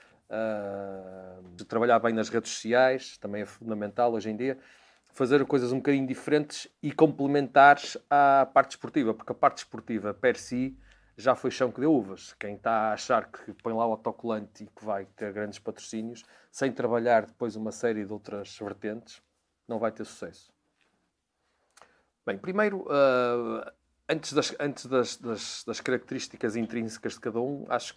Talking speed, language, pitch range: 160 wpm, Portuguese, 110-135 Hz